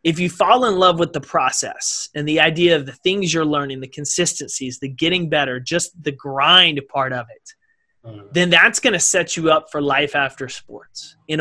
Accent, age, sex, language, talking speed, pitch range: American, 30-49, male, English, 205 wpm, 150-180 Hz